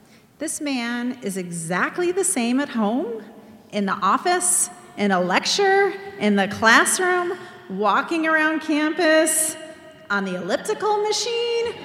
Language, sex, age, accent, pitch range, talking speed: English, female, 40-59, American, 205-295 Hz, 120 wpm